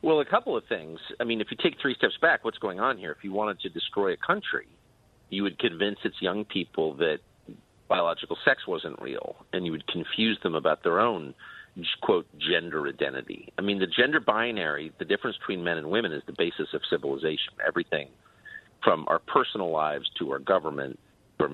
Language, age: English, 50-69